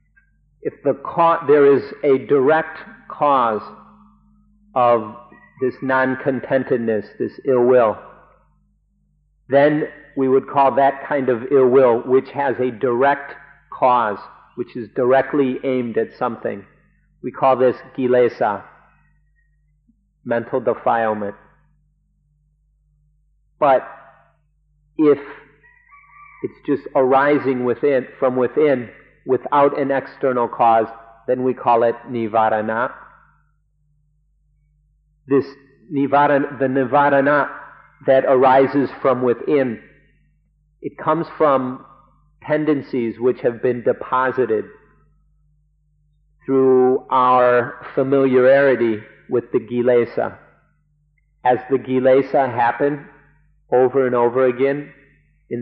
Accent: American